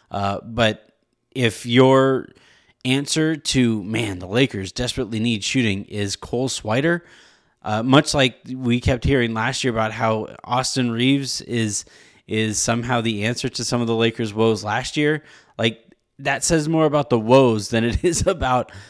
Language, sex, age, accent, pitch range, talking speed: English, male, 20-39, American, 110-135 Hz, 160 wpm